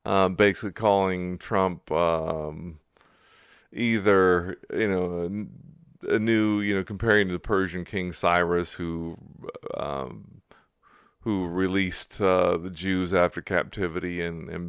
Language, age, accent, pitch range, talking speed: English, 40-59, American, 85-95 Hz, 125 wpm